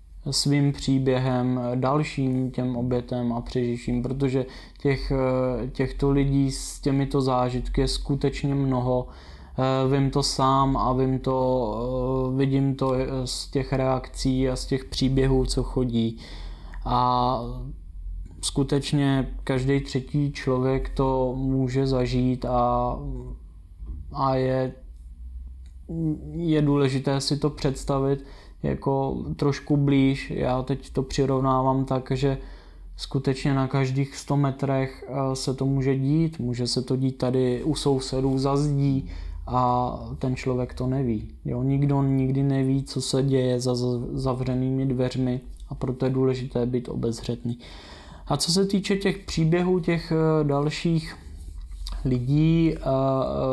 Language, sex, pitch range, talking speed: Czech, male, 125-135 Hz, 120 wpm